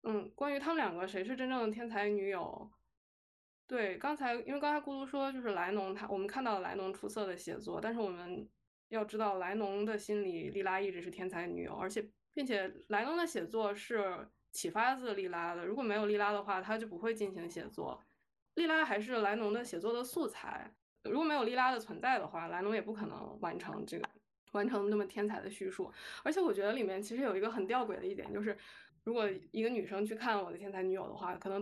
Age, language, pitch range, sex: 20-39, Chinese, 190-230 Hz, female